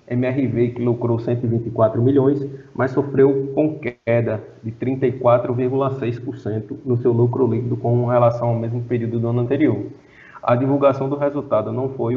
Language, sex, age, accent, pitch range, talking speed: Portuguese, male, 20-39, Brazilian, 115-130 Hz, 145 wpm